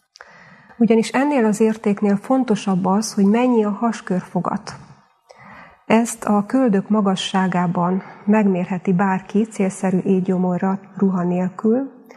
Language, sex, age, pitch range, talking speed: Hungarian, female, 30-49, 190-220 Hz, 100 wpm